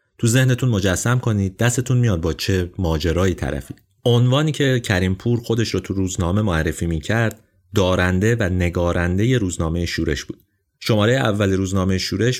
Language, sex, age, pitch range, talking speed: Persian, male, 30-49, 90-115 Hz, 150 wpm